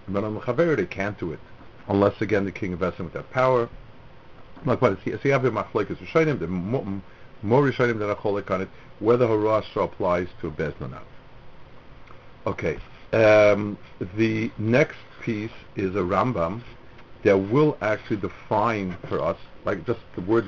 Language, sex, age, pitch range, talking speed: English, male, 50-69, 100-130 Hz, 155 wpm